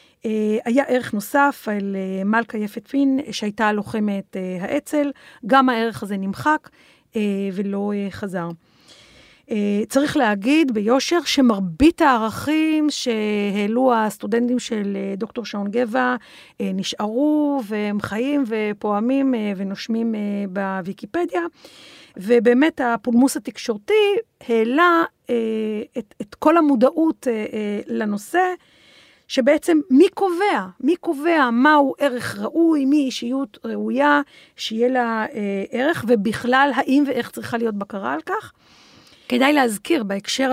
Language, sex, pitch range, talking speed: Hebrew, female, 205-275 Hz, 100 wpm